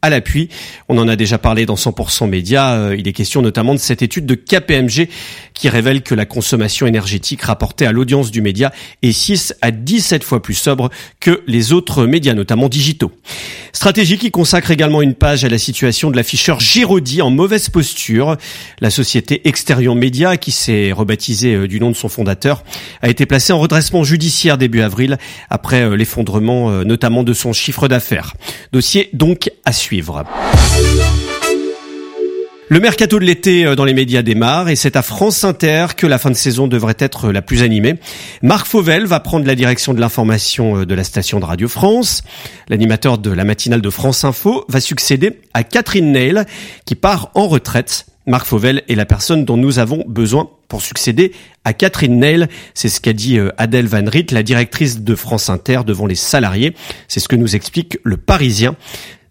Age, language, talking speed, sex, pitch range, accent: 40-59, French, 180 wpm, male, 110-155 Hz, French